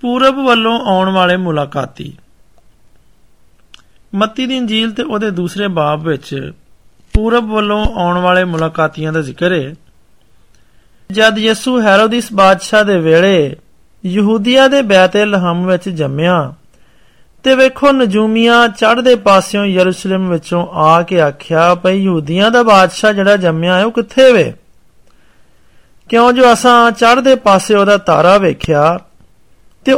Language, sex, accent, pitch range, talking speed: Hindi, male, native, 180-230 Hz, 90 wpm